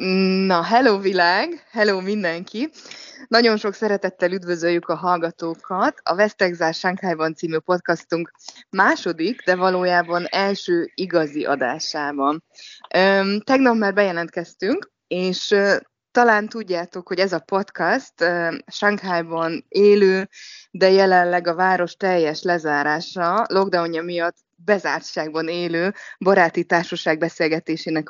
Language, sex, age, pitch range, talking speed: Hungarian, female, 20-39, 170-205 Hz, 100 wpm